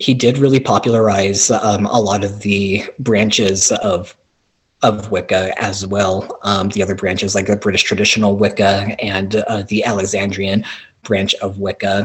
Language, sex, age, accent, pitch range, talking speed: English, male, 30-49, American, 100-110 Hz, 155 wpm